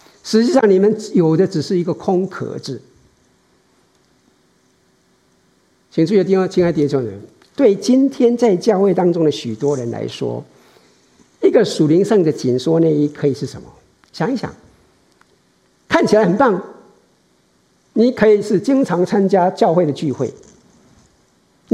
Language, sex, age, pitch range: Chinese, male, 50-69, 150-210 Hz